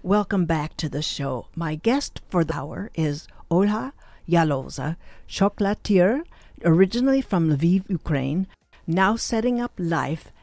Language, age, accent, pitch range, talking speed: English, 60-79, American, 155-200 Hz, 125 wpm